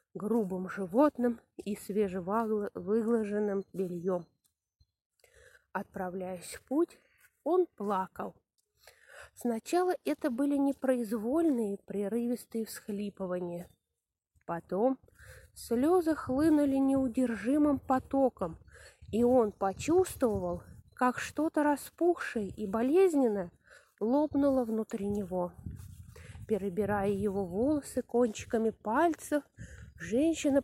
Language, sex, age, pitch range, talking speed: English, female, 20-39, 200-300 Hz, 75 wpm